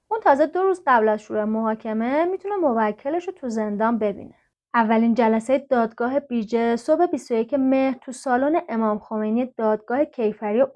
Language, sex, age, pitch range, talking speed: Persian, female, 30-49, 215-285 Hz, 140 wpm